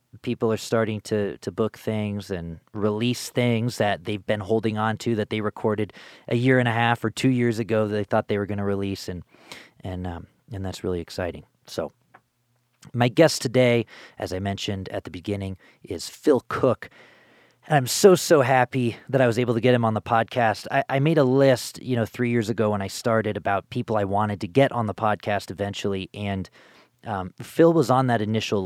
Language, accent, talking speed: English, American, 210 wpm